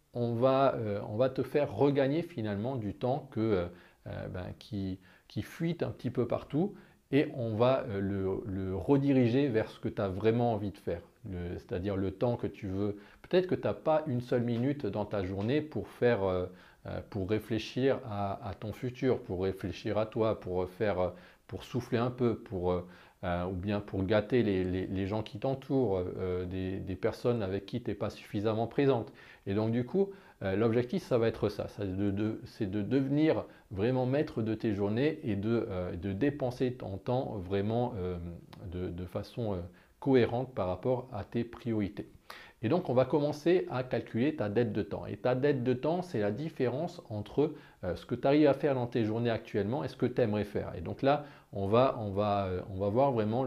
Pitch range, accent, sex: 100-130 Hz, French, male